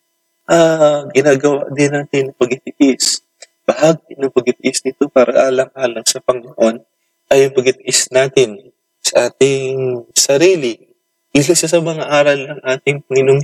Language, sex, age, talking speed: English, male, 20-39, 125 wpm